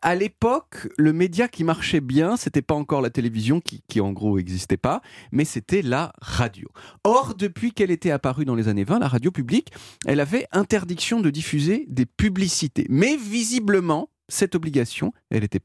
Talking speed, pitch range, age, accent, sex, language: 180 wpm, 135-205 Hz, 30-49, French, male, French